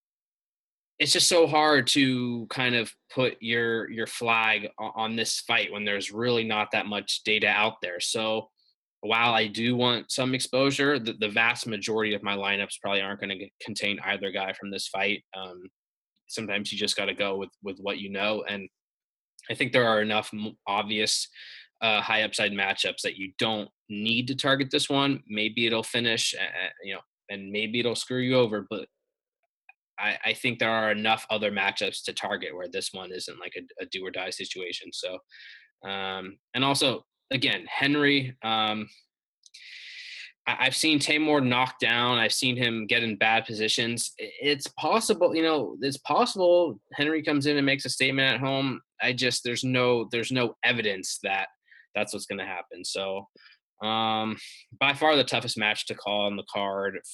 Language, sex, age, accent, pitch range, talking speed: English, male, 20-39, American, 105-130 Hz, 180 wpm